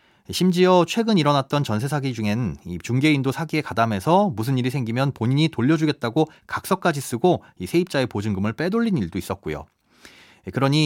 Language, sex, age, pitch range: Korean, male, 30-49, 115-165 Hz